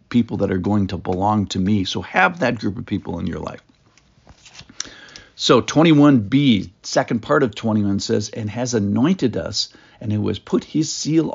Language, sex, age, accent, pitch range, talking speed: English, male, 60-79, American, 100-125 Hz, 180 wpm